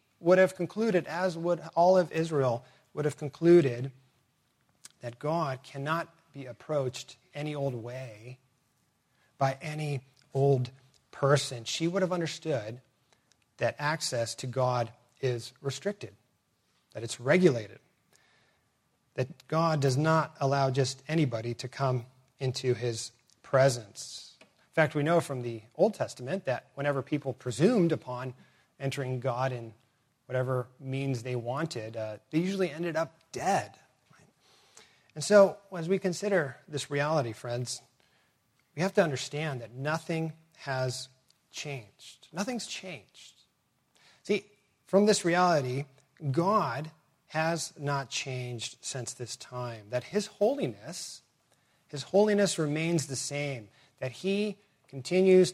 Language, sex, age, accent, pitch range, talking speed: English, male, 30-49, American, 130-165 Hz, 125 wpm